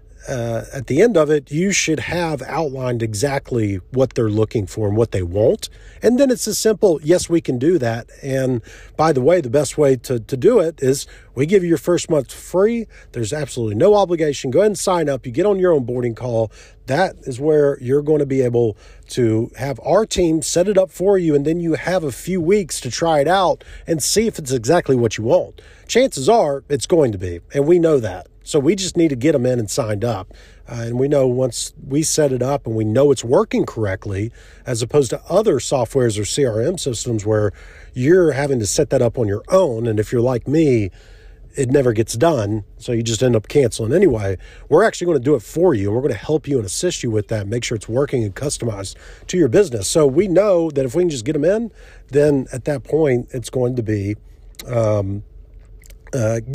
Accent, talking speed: American, 230 wpm